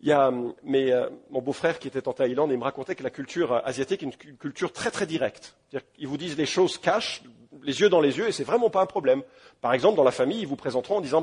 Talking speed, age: 275 wpm, 40-59